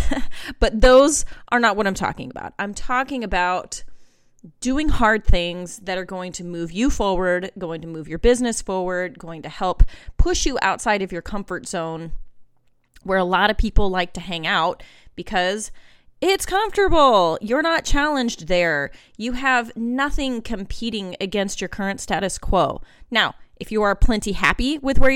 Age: 30-49